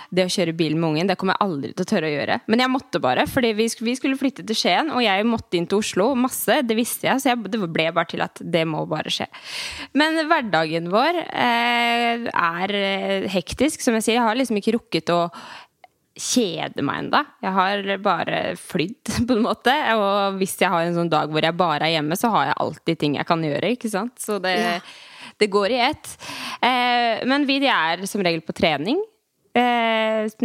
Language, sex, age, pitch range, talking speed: English, female, 20-39, 175-235 Hz, 215 wpm